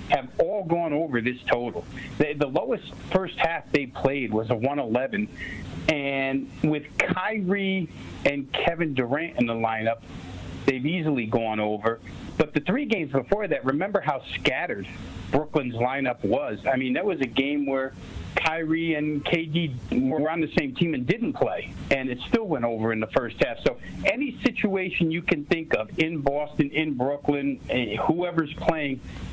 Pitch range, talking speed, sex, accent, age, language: 125-155 Hz, 165 wpm, male, American, 50-69, English